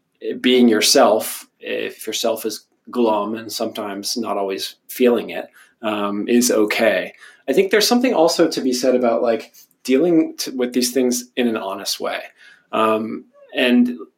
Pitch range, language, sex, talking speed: 115-135 Hz, English, male, 150 wpm